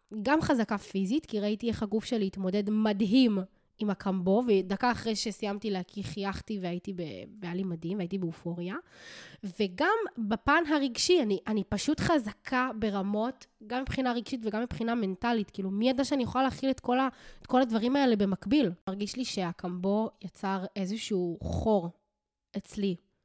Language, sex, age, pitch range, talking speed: Hebrew, female, 20-39, 195-255 Hz, 140 wpm